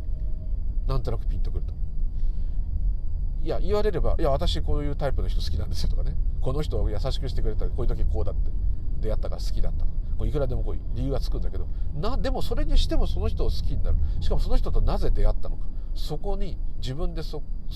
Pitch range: 80-110 Hz